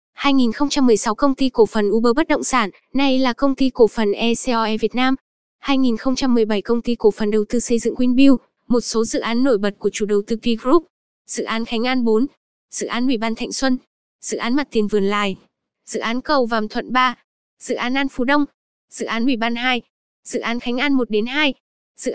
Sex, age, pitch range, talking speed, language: female, 10-29, 225-260 Hz, 215 wpm, Vietnamese